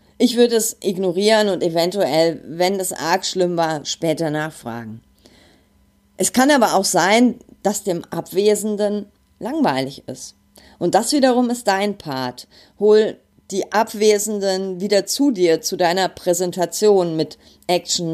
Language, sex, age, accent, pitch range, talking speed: German, female, 30-49, German, 165-210 Hz, 130 wpm